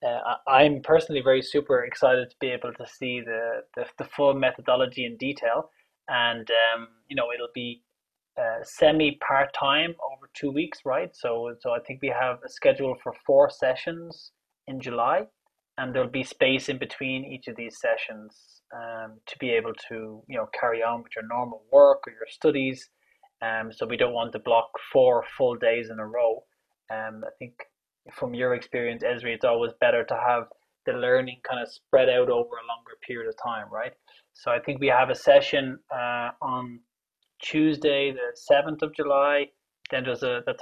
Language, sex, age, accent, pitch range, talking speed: English, male, 20-39, Irish, 120-150 Hz, 190 wpm